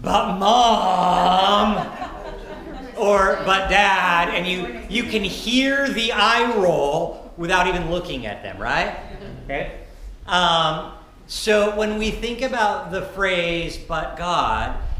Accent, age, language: American, 40-59, English